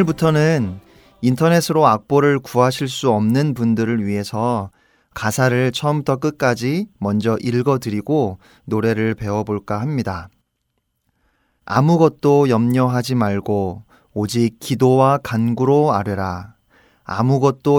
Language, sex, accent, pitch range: Korean, male, native, 105-135 Hz